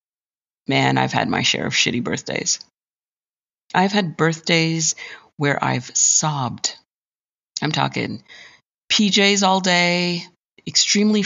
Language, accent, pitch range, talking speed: English, American, 135-185 Hz, 105 wpm